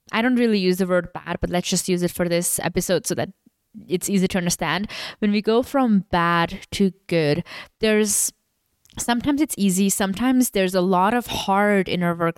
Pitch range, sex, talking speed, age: 180-215 Hz, female, 195 wpm, 10-29